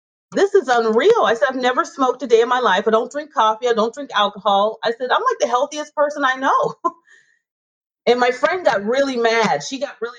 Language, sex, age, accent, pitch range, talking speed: English, female, 30-49, American, 210-285 Hz, 230 wpm